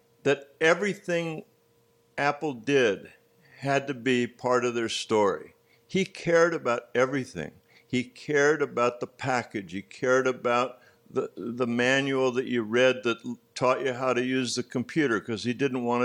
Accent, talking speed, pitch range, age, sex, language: American, 155 wpm, 110-140 Hz, 60-79, male, English